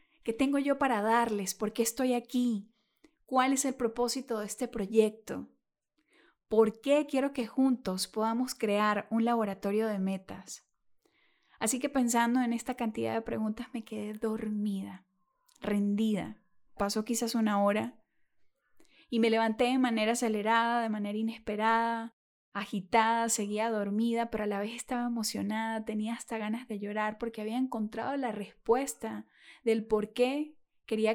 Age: 10-29